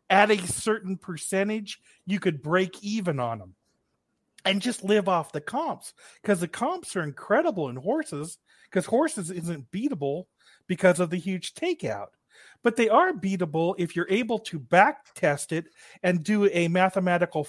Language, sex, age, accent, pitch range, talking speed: English, male, 40-59, American, 170-220 Hz, 160 wpm